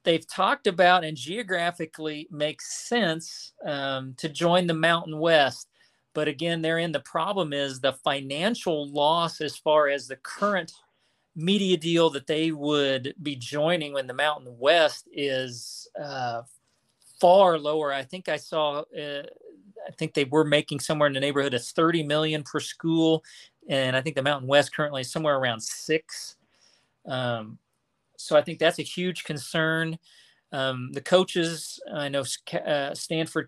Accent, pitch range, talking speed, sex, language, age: American, 140-170 Hz, 160 wpm, male, English, 40-59